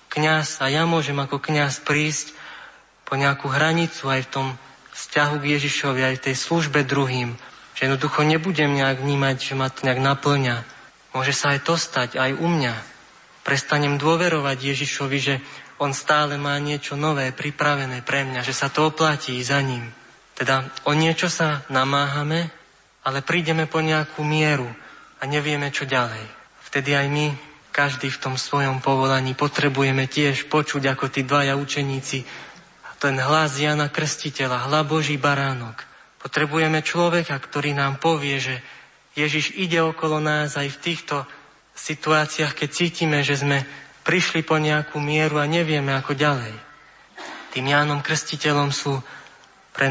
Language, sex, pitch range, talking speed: Slovak, male, 135-155 Hz, 150 wpm